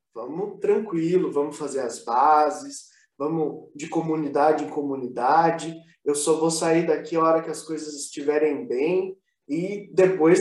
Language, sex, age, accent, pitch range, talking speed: Portuguese, male, 20-39, Brazilian, 160-230 Hz, 145 wpm